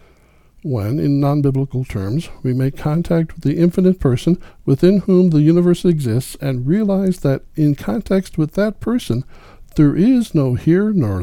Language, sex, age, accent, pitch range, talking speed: English, male, 60-79, American, 110-170 Hz, 155 wpm